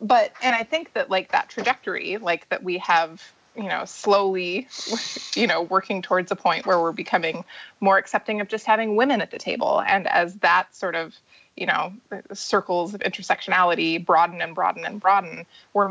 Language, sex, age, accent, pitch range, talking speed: English, female, 20-39, American, 175-205 Hz, 185 wpm